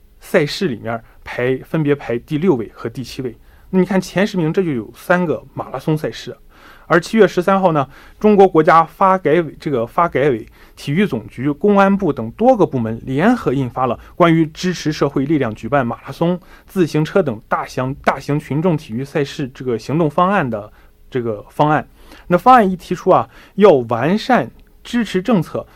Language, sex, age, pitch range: Korean, male, 20-39, 135-185 Hz